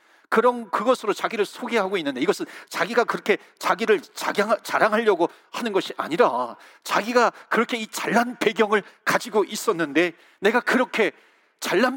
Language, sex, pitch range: Korean, male, 185-240 Hz